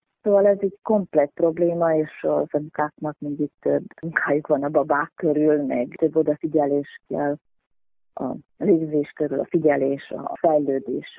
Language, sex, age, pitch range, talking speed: Hungarian, female, 30-49, 145-165 Hz, 145 wpm